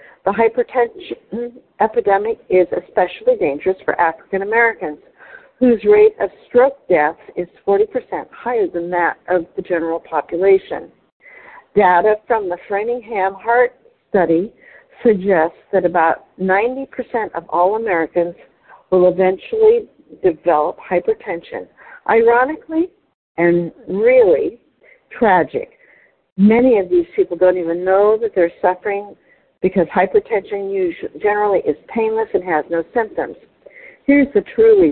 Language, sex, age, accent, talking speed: English, female, 50-69, American, 110 wpm